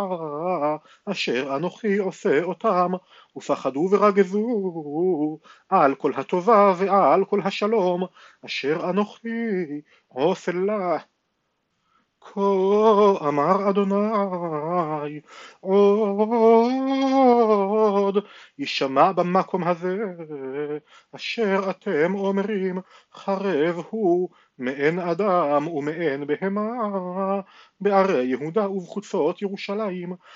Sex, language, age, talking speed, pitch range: male, Hebrew, 40-59, 70 wpm, 170-210 Hz